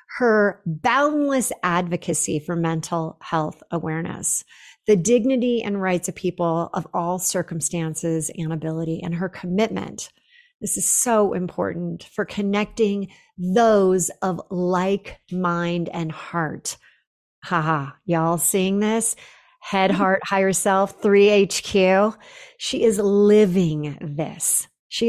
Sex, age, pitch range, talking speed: female, 40-59, 170-215 Hz, 115 wpm